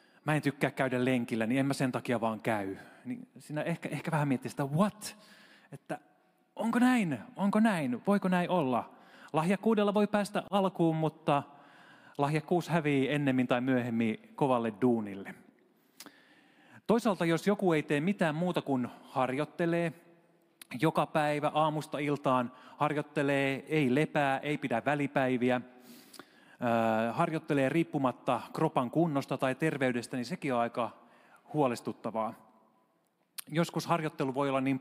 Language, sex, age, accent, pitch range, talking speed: Finnish, male, 30-49, native, 125-160 Hz, 130 wpm